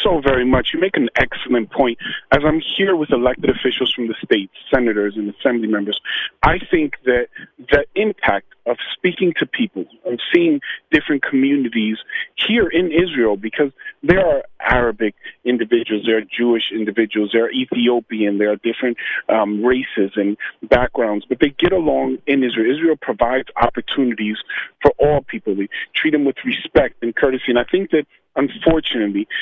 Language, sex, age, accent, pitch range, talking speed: English, male, 40-59, American, 115-150 Hz, 165 wpm